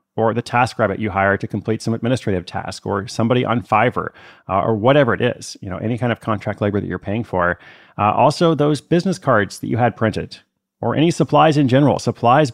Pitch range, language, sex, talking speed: 100-120 Hz, English, male, 220 wpm